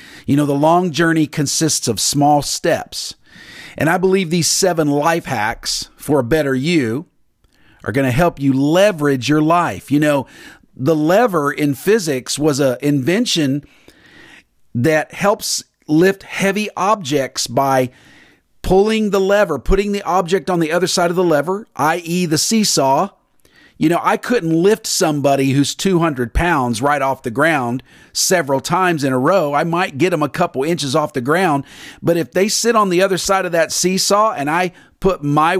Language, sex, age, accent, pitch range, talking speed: English, male, 40-59, American, 145-190 Hz, 170 wpm